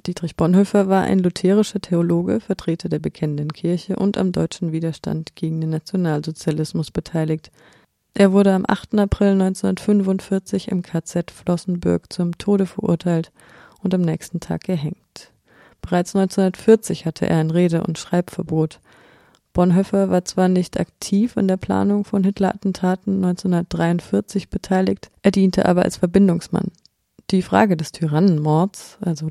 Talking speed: 135 wpm